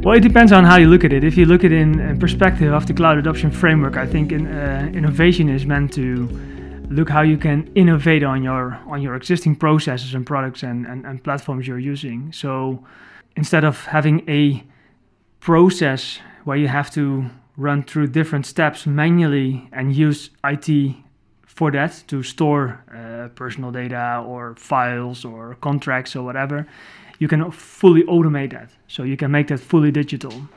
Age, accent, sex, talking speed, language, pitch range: 20-39, Dutch, male, 180 wpm, English, 130-160 Hz